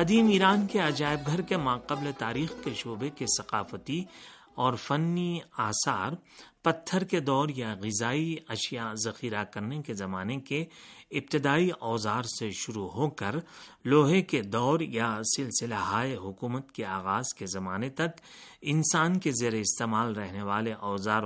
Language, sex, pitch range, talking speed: Urdu, male, 110-155 Hz, 145 wpm